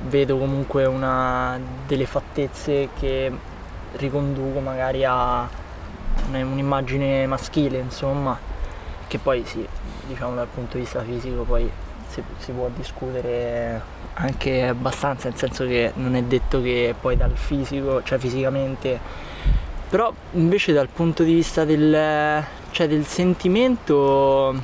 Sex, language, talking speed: male, Italian, 120 wpm